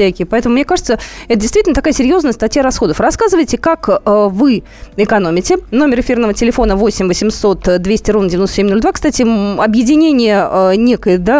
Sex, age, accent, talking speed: female, 20-39, native, 145 wpm